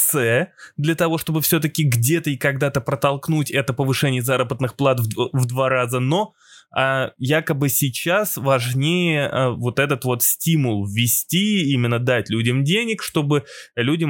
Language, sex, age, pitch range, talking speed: Russian, male, 20-39, 125-165 Hz, 130 wpm